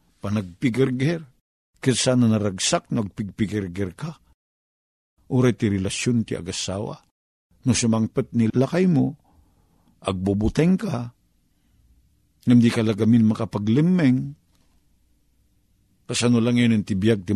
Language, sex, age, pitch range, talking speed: Filipino, male, 50-69, 85-120 Hz, 90 wpm